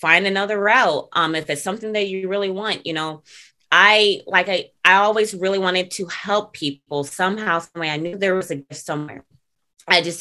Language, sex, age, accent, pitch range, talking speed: English, female, 20-39, American, 150-190 Hz, 205 wpm